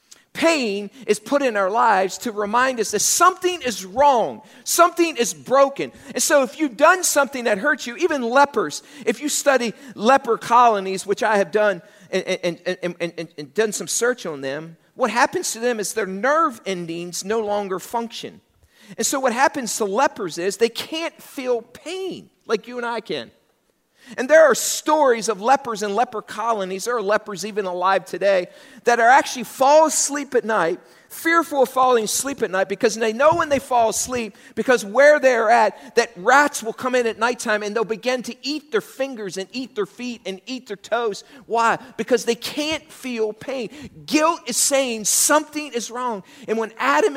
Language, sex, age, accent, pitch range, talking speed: English, male, 40-59, American, 205-270 Hz, 185 wpm